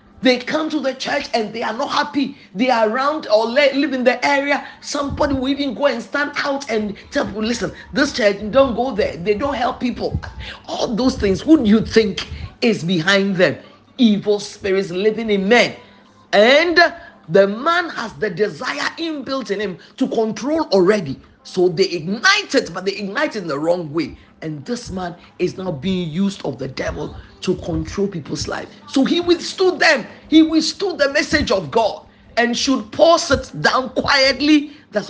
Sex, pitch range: male, 180-280 Hz